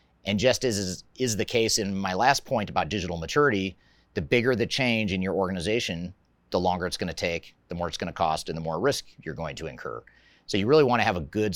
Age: 30-49